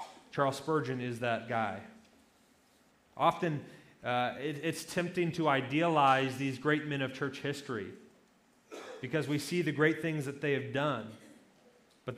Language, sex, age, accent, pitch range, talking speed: English, male, 30-49, American, 130-160 Hz, 140 wpm